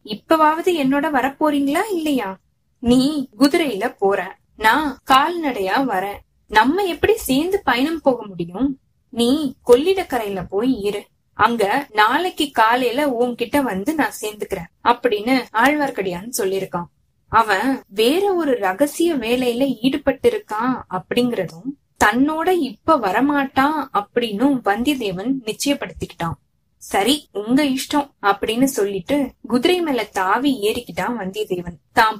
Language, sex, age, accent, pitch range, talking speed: Tamil, female, 20-39, native, 215-290 Hz, 105 wpm